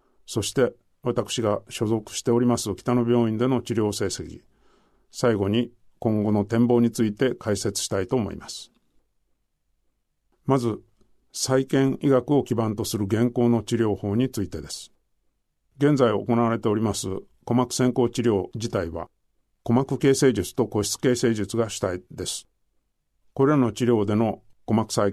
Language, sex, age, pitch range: Japanese, male, 50-69, 105-125 Hz